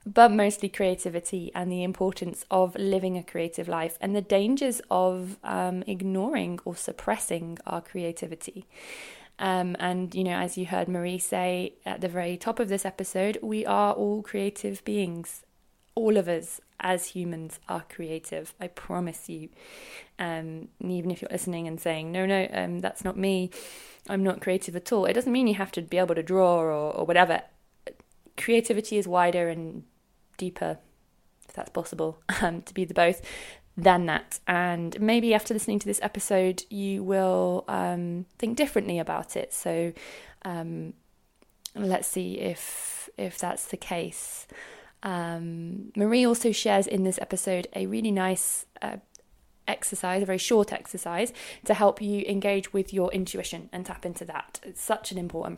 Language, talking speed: English, 165 wpm